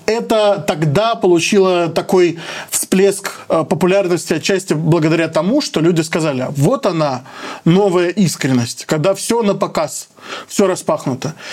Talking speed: 115 wpm